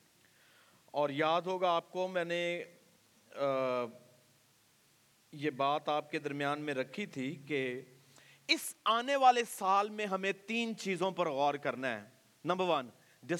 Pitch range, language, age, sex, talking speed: 150-215 Hz, Urdu, 40-59, male, 135 wpm